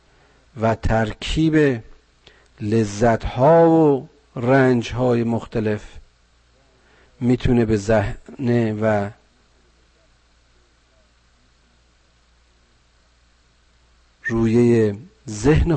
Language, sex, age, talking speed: Persian, male, 50-69, 55 wpm